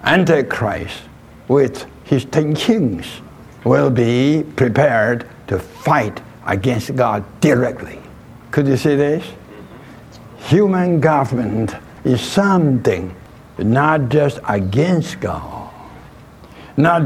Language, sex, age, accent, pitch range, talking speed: English, male, 60-79, American, 110-145 Hz, 90 wpm